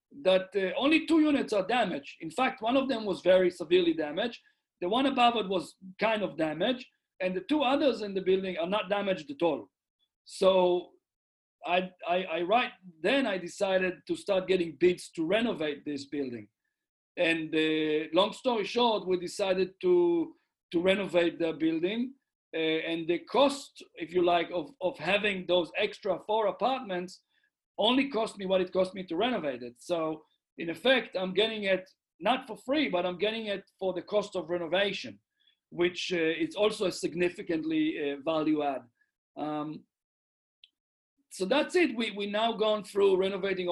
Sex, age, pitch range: male, 50-69, 165-220 Hz